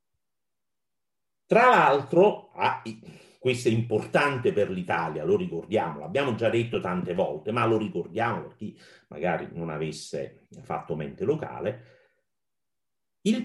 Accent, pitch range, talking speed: native, 110-165 Hz, 115 wpm